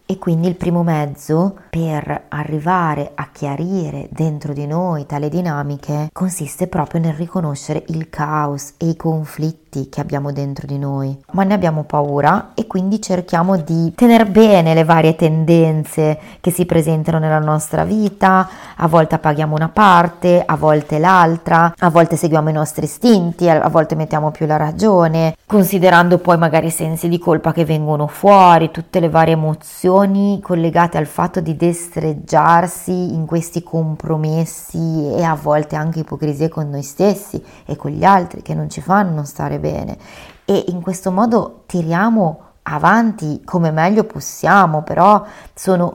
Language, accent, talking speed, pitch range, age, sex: Italian, native, 155 wpm, 155-185 Hz, 30-49, female